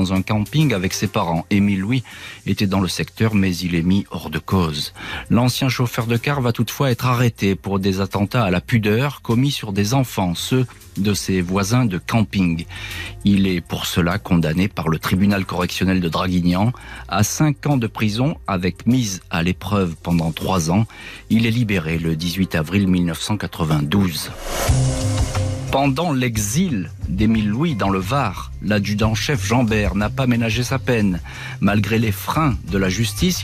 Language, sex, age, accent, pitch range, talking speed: French, male, 40-59, French, 95-115 Hz, 165 wpm